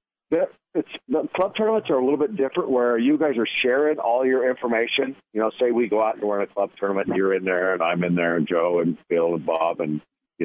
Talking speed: 260 wpm